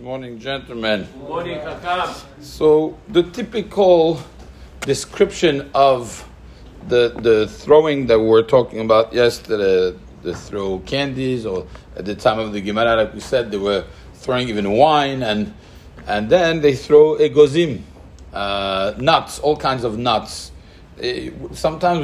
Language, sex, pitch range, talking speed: English, male, 105-140 Hz, 130 wpm